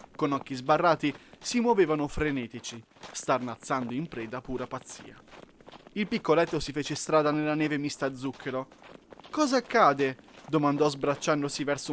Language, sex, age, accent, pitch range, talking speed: Italian, male, 20-39, native, 130-180 Hz, 130 wpm